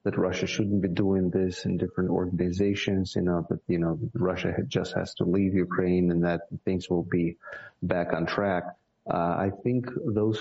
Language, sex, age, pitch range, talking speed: English, male, 30-49, 90-105 Hz, 185 wpm